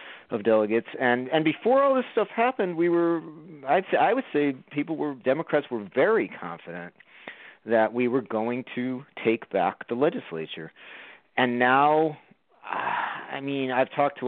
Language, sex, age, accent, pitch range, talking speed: English, male, 40-59, American, 110-145 Hz, 160 wpm